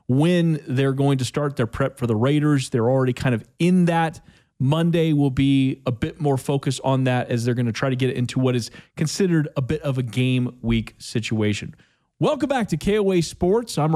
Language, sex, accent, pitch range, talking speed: English, male, American, 130-160 Hz, 210 wpm